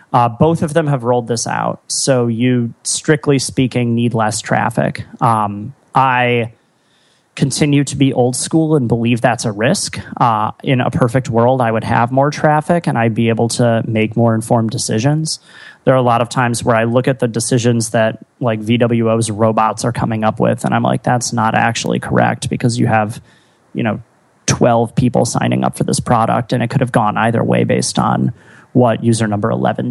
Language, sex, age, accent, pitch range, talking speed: English, male, 30-49, American, 115-135 Hz, 195 wpm